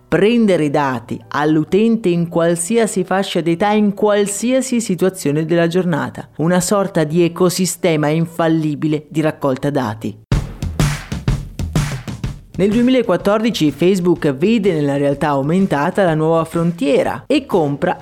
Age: 30-49